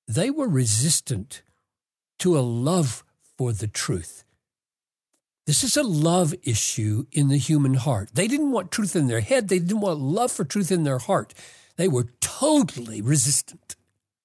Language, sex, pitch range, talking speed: English, male, 125-180 Hz, 160 wpm